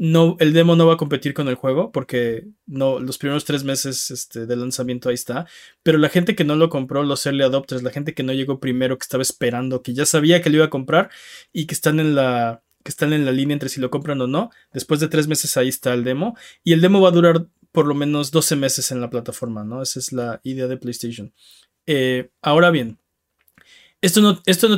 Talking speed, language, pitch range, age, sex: 240 wpm, Spanish, 130-160 Hz, 20-39, male